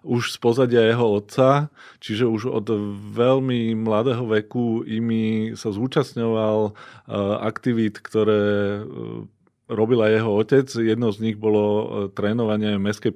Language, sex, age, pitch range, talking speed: Slovak, male, 30-49, 105-120 Hz, 115 wpm